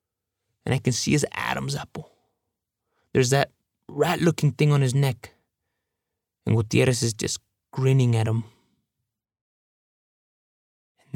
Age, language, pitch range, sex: 20-39, English, 115-150 Hz, male